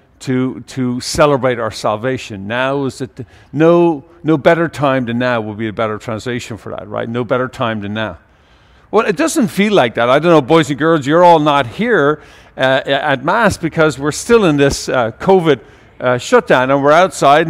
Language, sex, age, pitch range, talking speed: English, male, 50-69, 130-170 Hz, 200 wpm